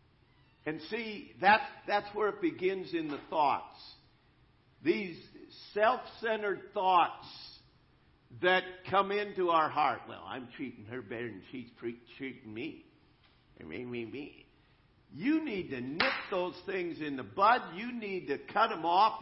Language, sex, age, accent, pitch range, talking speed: English, male, 50-69, American, 130-220 Hz, 145 wpm